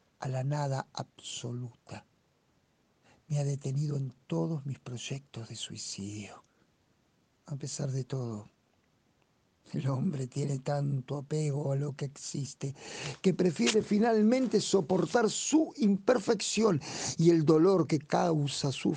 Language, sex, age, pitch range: Spanish, male, 50-69, 140-180 Hz